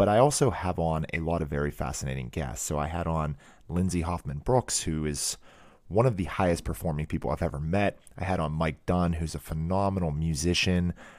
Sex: male